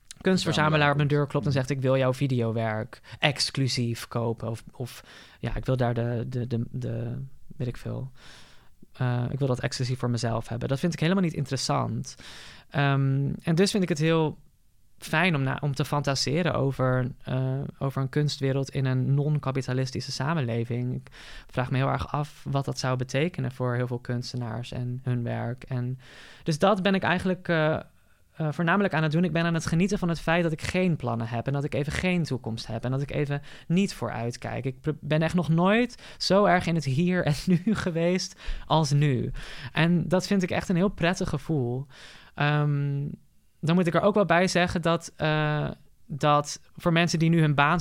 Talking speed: 200 wpm